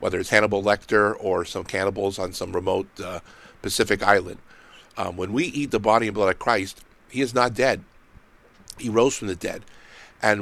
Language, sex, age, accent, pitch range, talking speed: English, male, 50-69, American, 100-120 Hz, 190 wpm